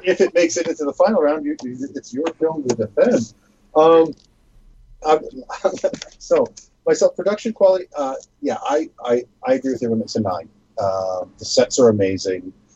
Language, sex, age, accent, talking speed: English, male, 40-59, American, 170 wpm